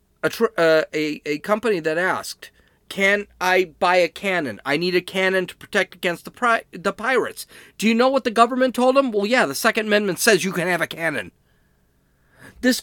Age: 40-59